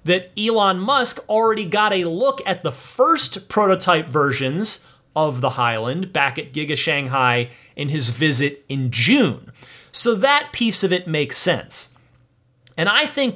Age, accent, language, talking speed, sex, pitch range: 30-49, American, English, 155 wpm, male, 135-195 Hz